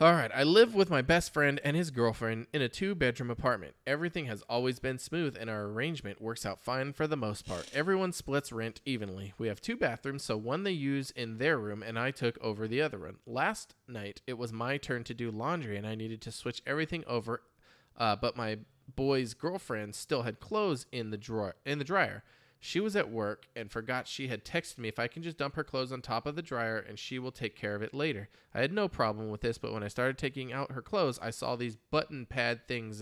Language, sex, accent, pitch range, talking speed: English, male, American, 115-145 Hz, 240 wpm